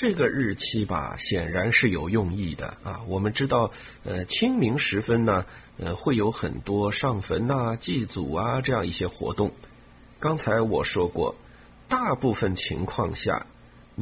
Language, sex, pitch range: Chinese, male, 95-125 Hz